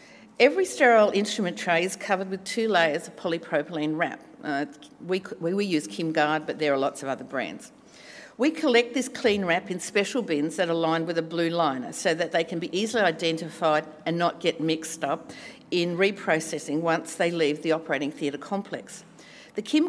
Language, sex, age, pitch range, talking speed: English, female, 50-69, 160-205 Hz, 195 wpm